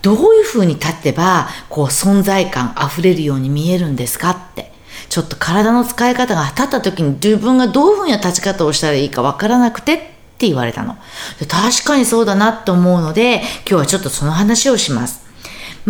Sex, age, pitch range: female, 40-59, 160-265 Hz